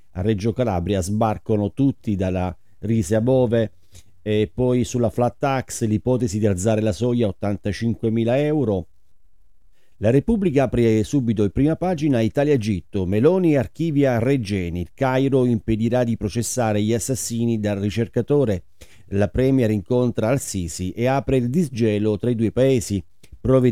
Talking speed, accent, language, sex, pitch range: 140 wpm, native, Italian, male, 95-125 Hz